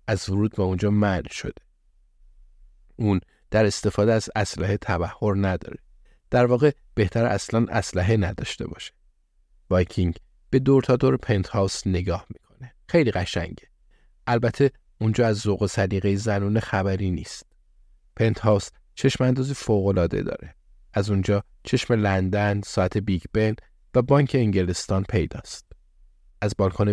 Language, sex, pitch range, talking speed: Persian, male, 90-115 Hz, 125 wpm